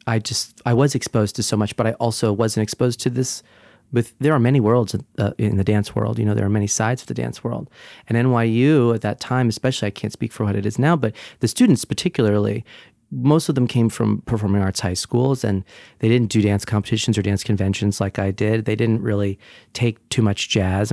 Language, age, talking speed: English, 30-49, 230 wpm